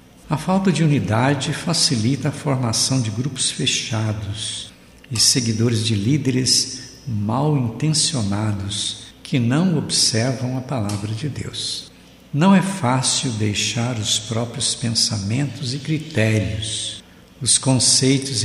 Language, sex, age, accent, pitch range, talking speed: Portuguese, male, 60-79, Brazilian, 110-145 Hz, 110 wpm